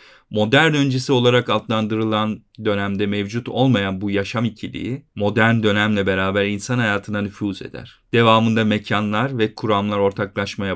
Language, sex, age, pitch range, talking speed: Turkish, male, 40-59, 105-125 Hz, 125 wpm